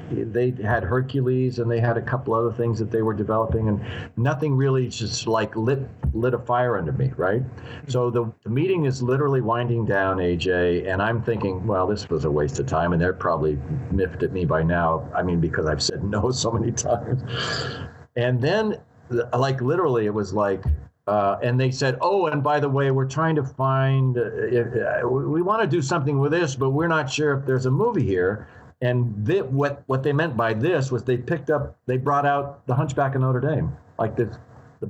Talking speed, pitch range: 210 wpm, 110-135 Hz